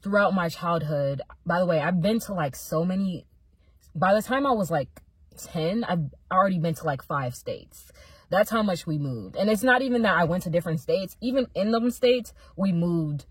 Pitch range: 145-185 Hz